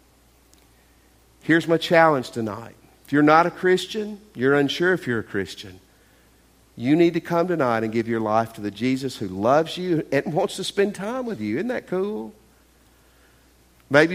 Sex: male